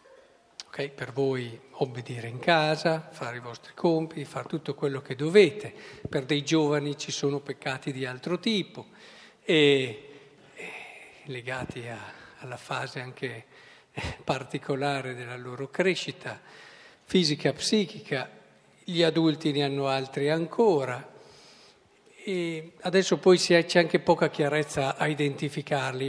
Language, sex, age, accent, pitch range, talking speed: Italian, male, 50-69, native, 140-170 Hz, 125 wpm